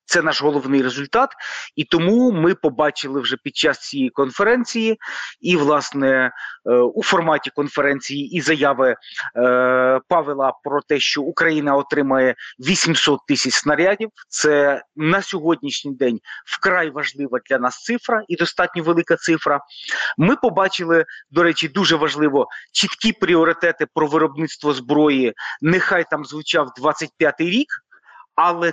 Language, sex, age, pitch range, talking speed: Ukrainian, male, 30-49, 140-170 Hz, 125 wpm